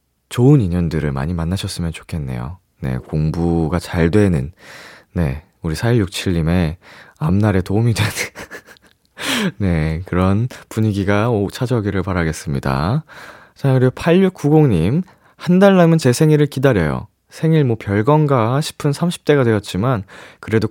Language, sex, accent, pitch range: Korean, male, native, 85-130 Hz